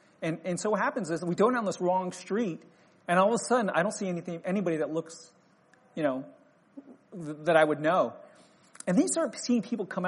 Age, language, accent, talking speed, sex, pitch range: 40-59, English, American, 225 wpm, male, 160-205 Hz